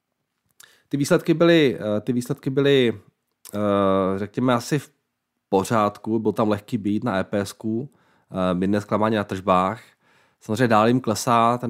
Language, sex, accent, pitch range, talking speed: Czech, male, native, 95-110 Hz, 125 wpm